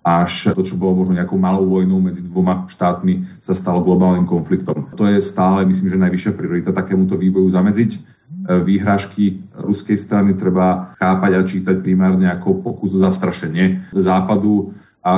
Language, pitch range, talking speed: Slovak, 90-100 Hz, 155 wpm